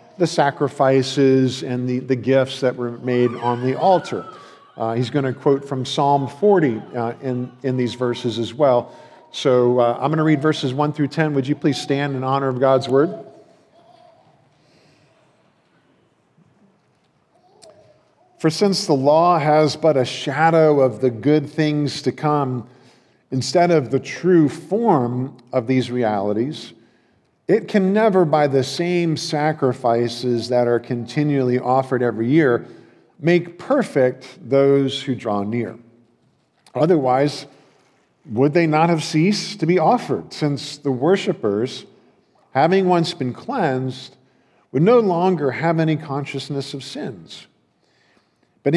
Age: 50-69